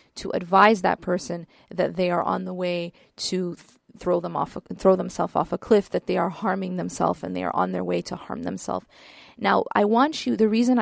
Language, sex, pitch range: English, female, 185-220 Hz